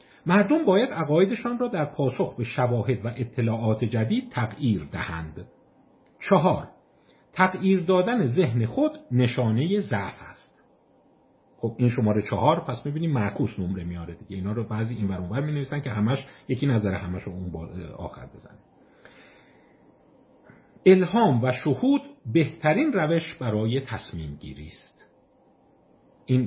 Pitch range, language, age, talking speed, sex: 105-170 Hz, Persian, 50-69, 125 wpm, male